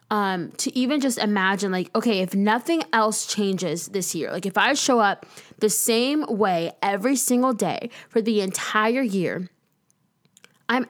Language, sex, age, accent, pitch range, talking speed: English, female, 10-29, American, 185-230 Hz, 160 wpm